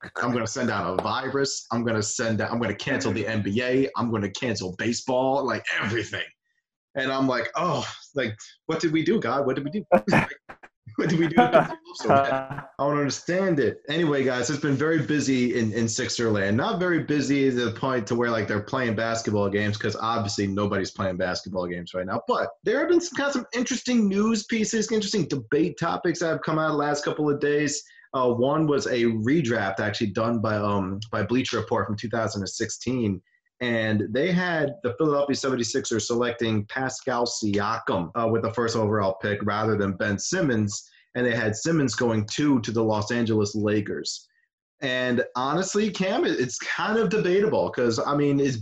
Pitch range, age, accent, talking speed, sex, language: 110-155 Hz, 30-49, American, 190 wpm, male, English